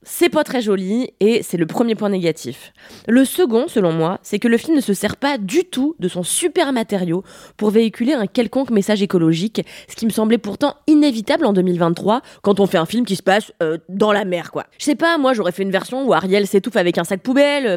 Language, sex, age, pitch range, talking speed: French, female, 20-39, 175-275 Hz, 235 wpm